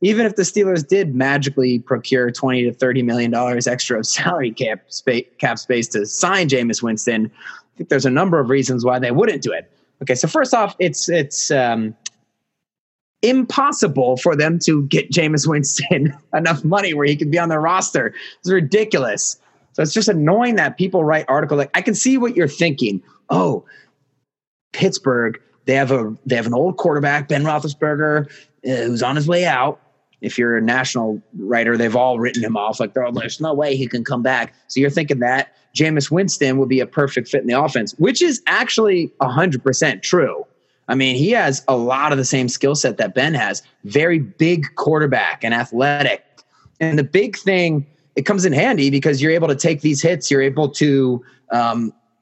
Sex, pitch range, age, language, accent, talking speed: male, 130-165 Hz, 30-49, English, American, 195 wpm